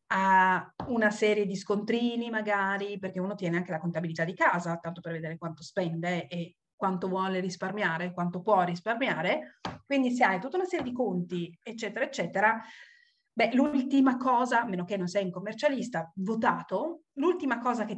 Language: Italian